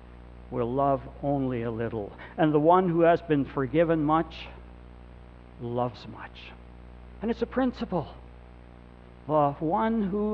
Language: English